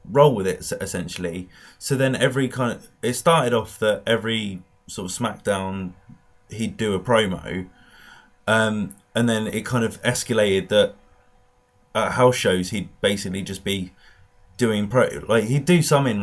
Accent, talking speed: British, 160 wpm